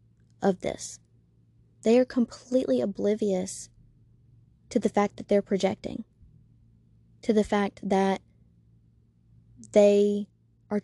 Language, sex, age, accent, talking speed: English, female, 20-39, American, 100 wpm